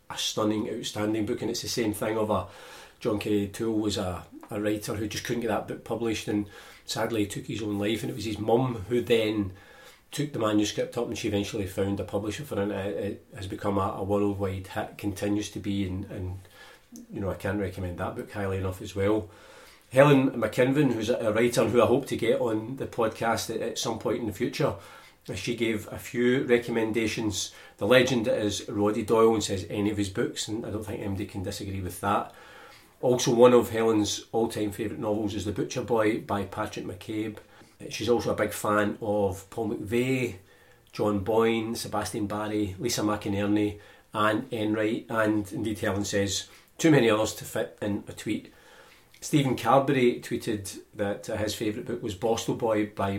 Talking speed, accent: 190 wpm, British